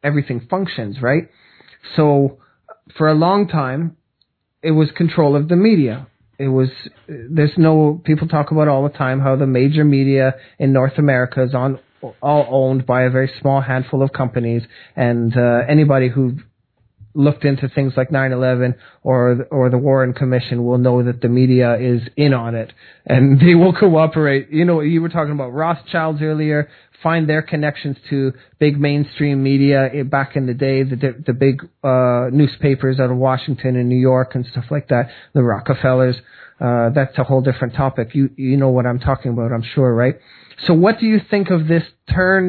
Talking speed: 185 wpm